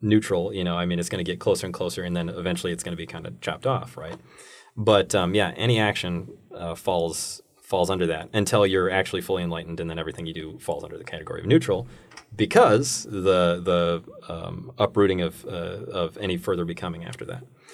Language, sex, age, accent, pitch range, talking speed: English, male, 30-49, American, 90-110 Hz, 215 wpm